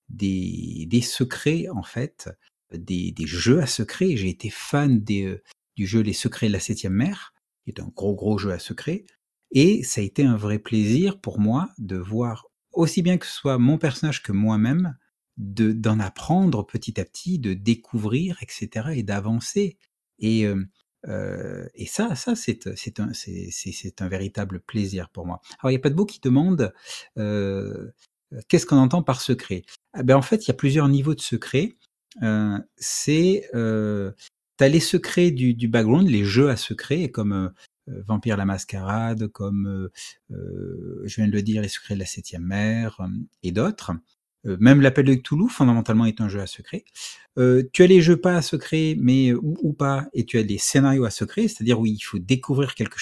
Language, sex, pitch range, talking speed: French, male, 100-140 Hz, 200 wpm